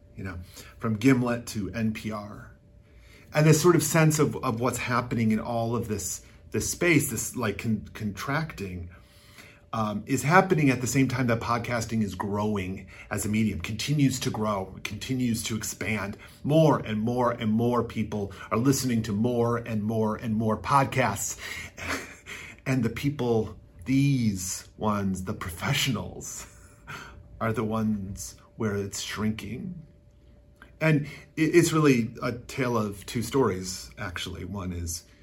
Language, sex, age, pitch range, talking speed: English, male, 40-59, 100-125 Hz, 145 wpm